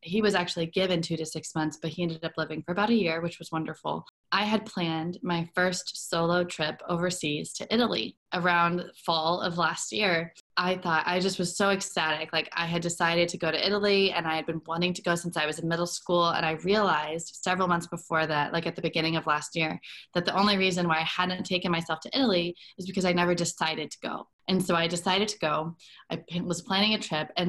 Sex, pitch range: female, 165-185 Hz